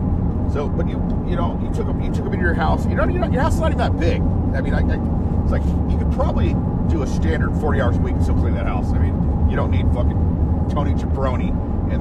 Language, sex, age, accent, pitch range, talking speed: English, male, 40-59, American, 85-90 Hz, 255 wpm